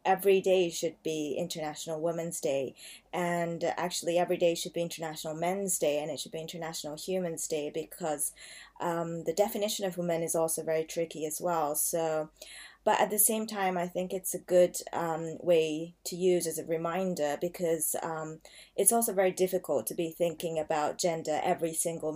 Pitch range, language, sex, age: 160-185 Hz, Japanese, female, 20-39